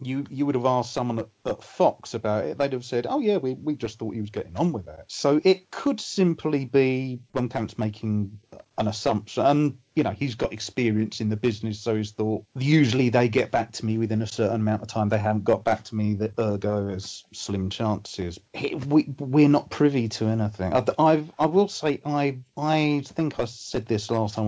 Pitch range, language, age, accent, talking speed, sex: 105-130 Hz, English, 40-59, British, 225 wpm, male